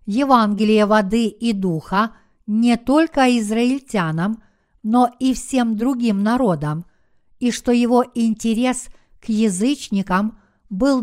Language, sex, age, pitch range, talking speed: Russian, female, 50-69, 210-245 Hz, 105 wpm